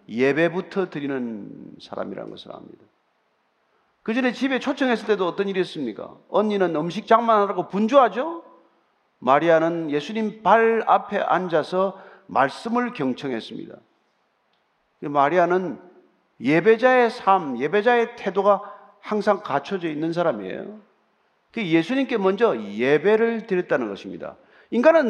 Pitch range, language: 180-255 Hz, Korean